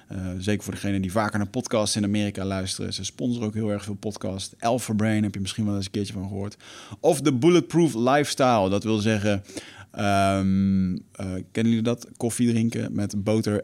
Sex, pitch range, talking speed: male, 100-125 Hz, 200 wpm